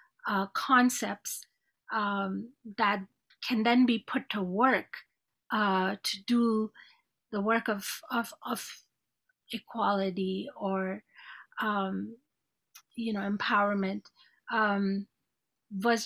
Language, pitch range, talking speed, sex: English, 200-235 Hz, 95 wpm, female